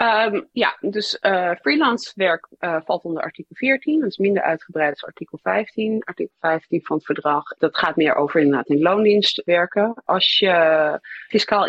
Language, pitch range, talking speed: Dutch, 145-195 Hz, 170 wpm